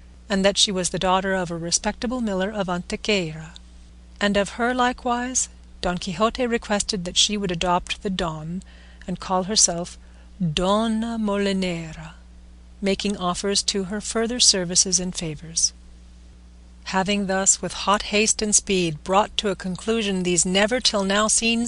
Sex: female